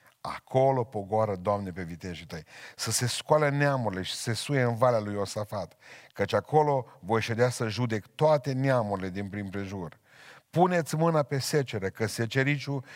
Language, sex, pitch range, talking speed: Romanian, male, 105-130 Hz, 155 wpm